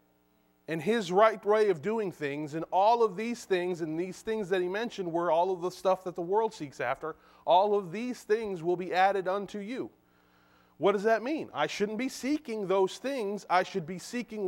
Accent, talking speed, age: American, 210 wpm, 30-49